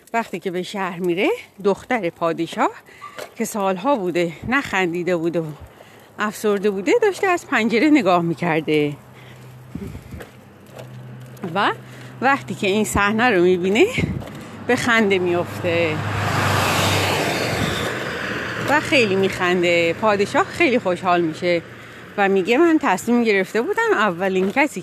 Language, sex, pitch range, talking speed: Persian, female, 180-260 Hz, 110 wpm